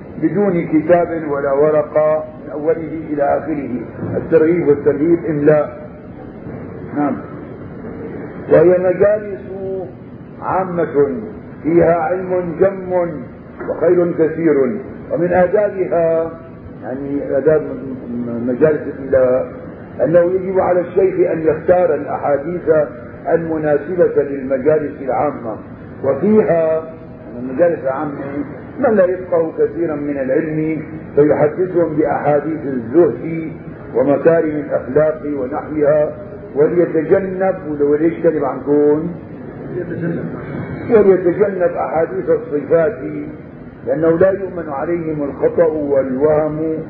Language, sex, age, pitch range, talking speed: Arabic, male, 50-69, 140-170 Hz, 85 wpm